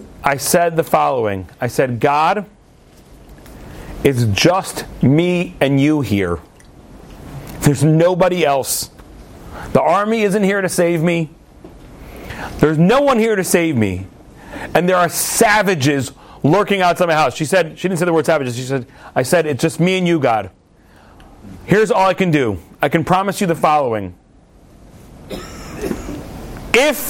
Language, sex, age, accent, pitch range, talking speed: English, male, 40-59, American, 140-200 Hz, 150 wpm